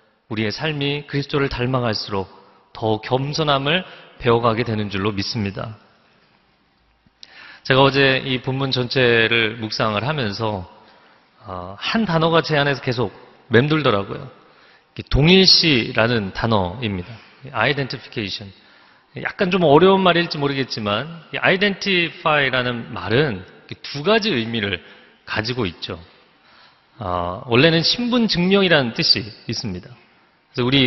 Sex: male